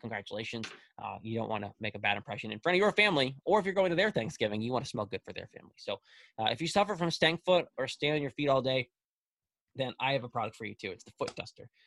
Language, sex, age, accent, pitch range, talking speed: English, male, 20-39, American, 115-145 Hz, 295 wpm